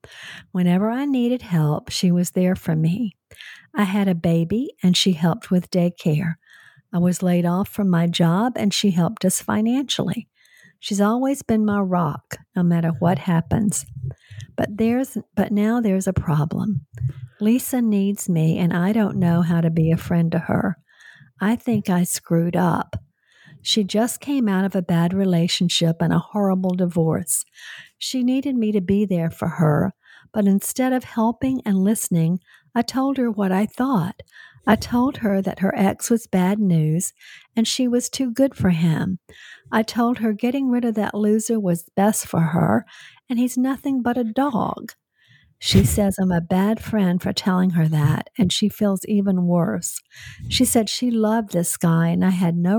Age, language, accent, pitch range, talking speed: 50-69, English, American, 175-220 Hz, 175 wpm